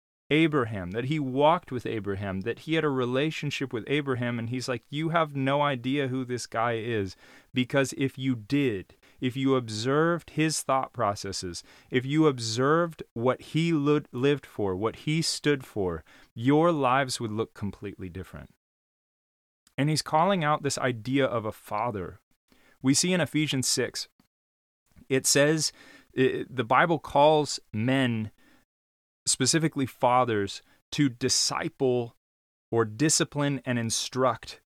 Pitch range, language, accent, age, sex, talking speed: 115-145 Hz, English, American, 30-49, male, 135 wpm